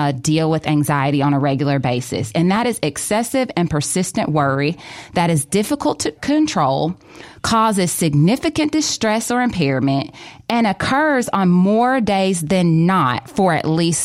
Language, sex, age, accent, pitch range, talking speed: English, female, 20-39, American, 145-200 Hz, 150 wpm